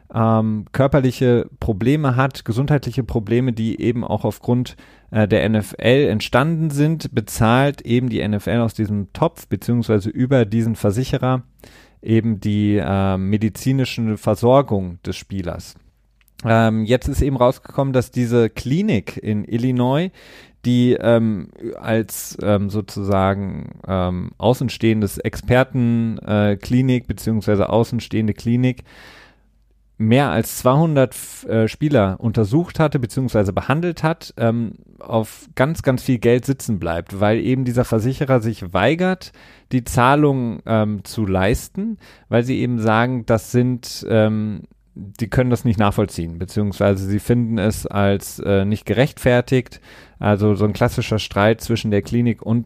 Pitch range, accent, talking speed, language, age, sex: 105-125 Hz, German, 130 wpm, German, 30-49, male